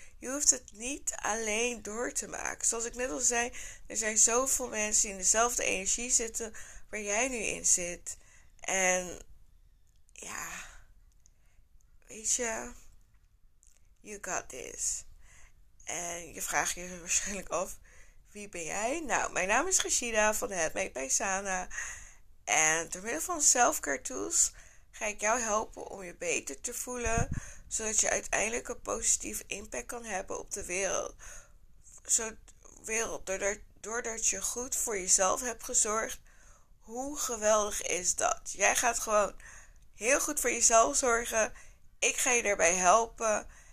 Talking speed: 145 wpm